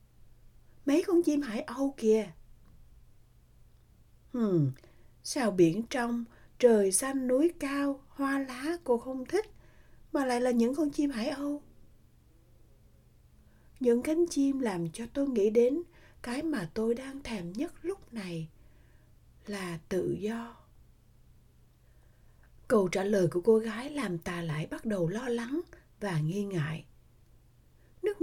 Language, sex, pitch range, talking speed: Vietnamese, female, 175-265 Hz, 135 wpm